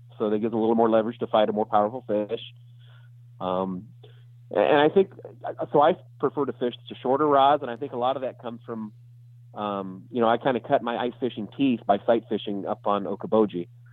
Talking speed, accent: 220 wpm, American